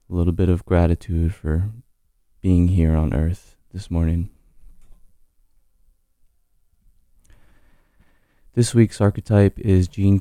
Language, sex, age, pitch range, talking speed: English, male, 20-39, 85-100 Hz, 100 wpm